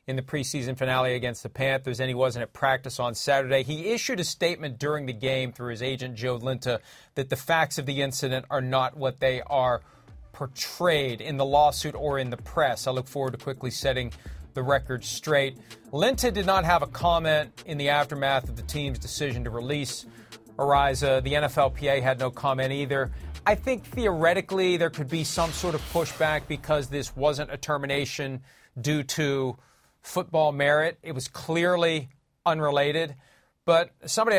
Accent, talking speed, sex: American, 175 wpm, male